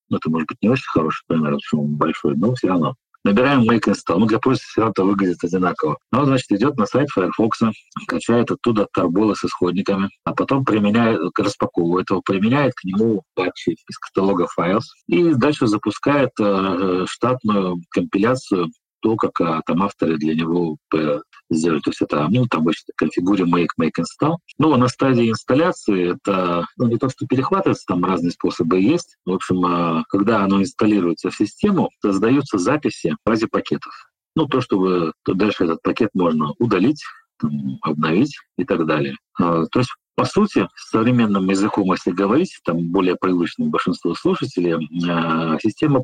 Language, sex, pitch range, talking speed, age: Russian, male, 85-115 Hz, 160 wpm, 40-59